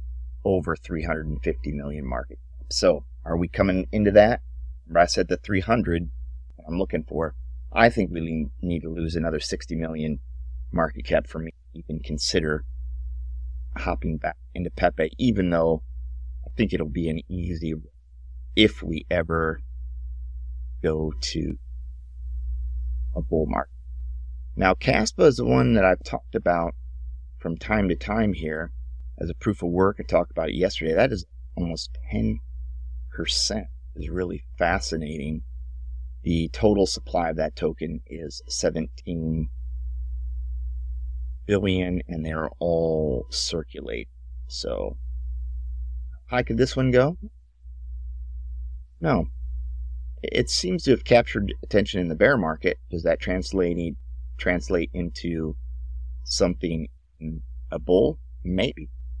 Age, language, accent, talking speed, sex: 30-49, English, American, 130 wpm, male